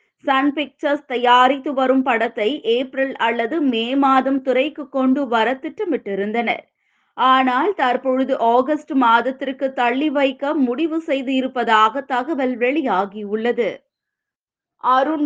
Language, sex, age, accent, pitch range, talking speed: Tamil, female, 20-39, native, 235-285 Hz, 100 wpm